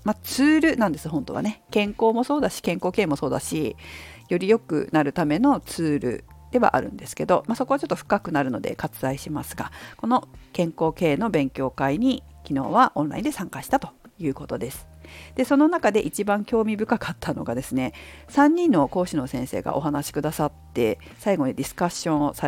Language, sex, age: Japanese, female, 50-69